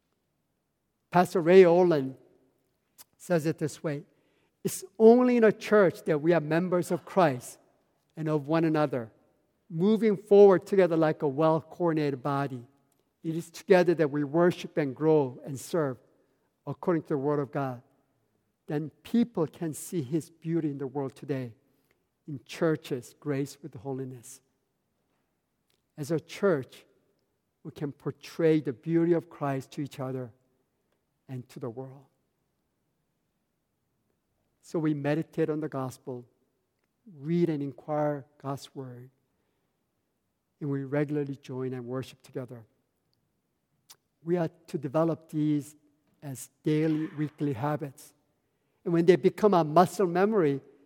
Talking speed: 130 wpm